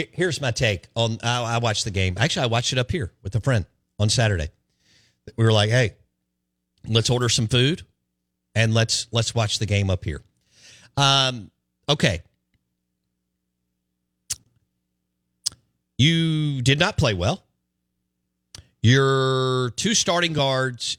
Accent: American